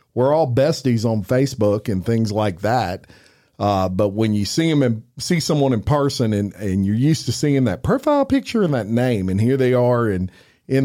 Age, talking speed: 40-59, 210 wpm